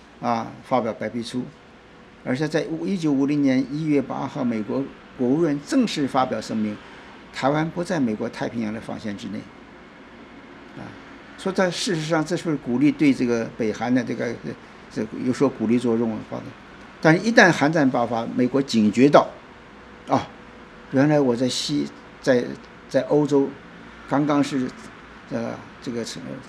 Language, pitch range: Chinese, 120-155 Hz